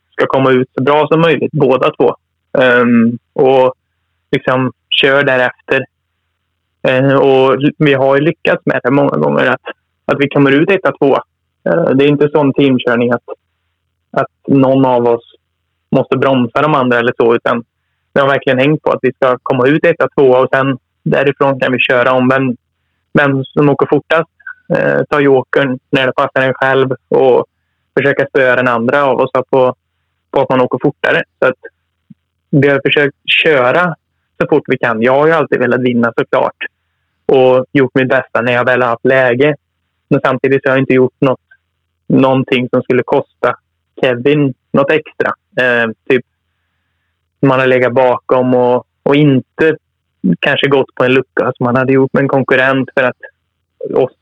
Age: 20-39